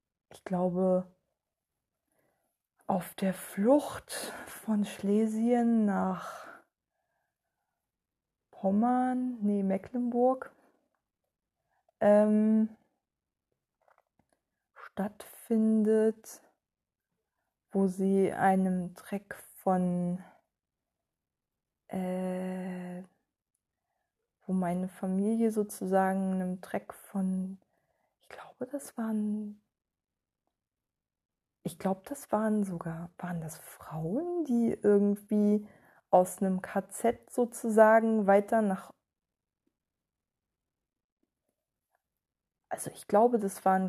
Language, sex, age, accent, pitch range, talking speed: German, female, 20-39, German, 180-215 Hz, 70 wpm